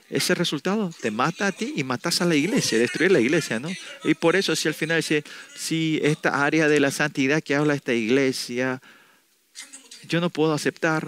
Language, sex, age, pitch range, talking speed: Spanish, male, 40-59, 130-165 Hz, 200 wpm